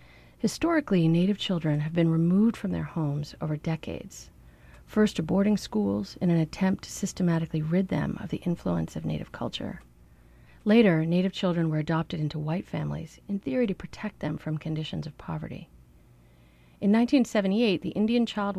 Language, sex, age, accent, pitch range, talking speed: English, female, 40-59, American, 150-190 Hz, 160 wpm